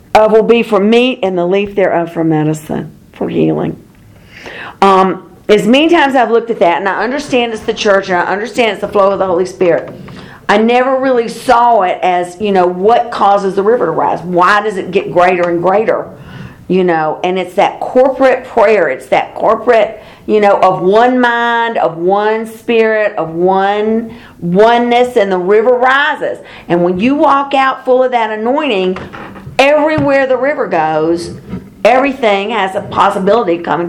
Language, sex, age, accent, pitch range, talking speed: English, female, 50-69, American, 185-245 Hz, 180 wpm